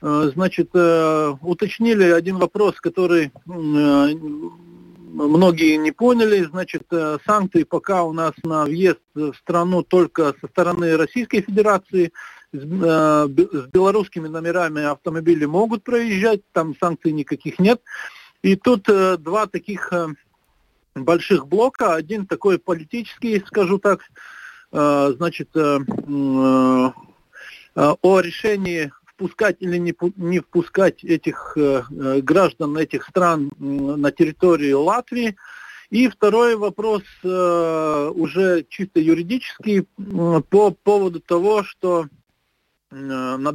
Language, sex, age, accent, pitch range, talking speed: Russian, male, 50-69, native, 150-195 Hz, 95 wpm